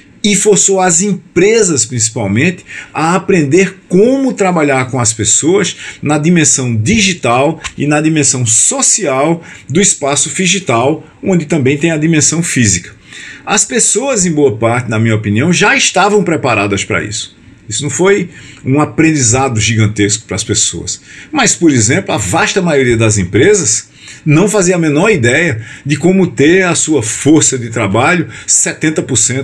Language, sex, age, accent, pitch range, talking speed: Portuguese, male, 50-69, Brazilian, 115-180 Hz, 145 wpm